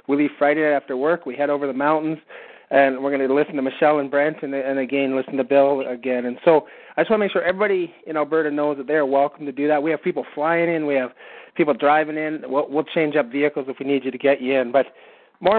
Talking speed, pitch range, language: 270 wpm, 140-155 Hz, English